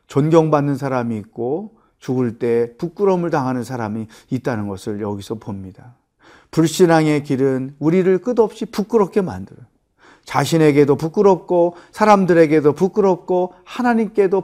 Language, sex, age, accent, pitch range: Korean, male, 40-59, native, 125-175 Hz